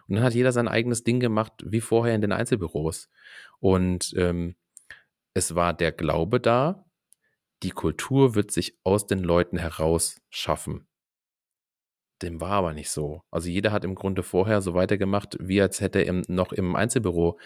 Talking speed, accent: 170 wpm, German